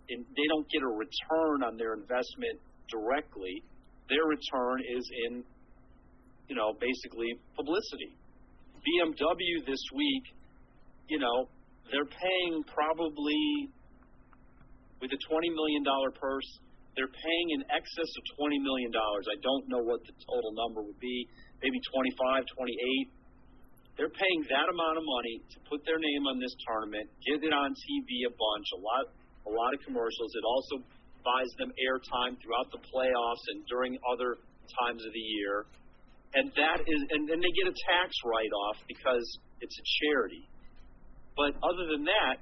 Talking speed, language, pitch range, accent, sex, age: 155 wpm, English, 125-155 Hz, American, male, 40-59